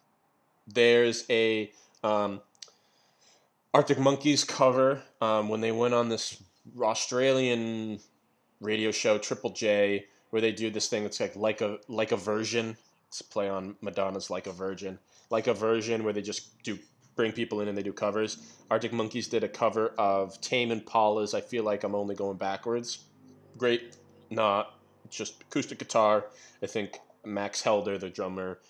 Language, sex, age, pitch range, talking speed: English, male, 20-39, 95-115 Hz, 165 wpm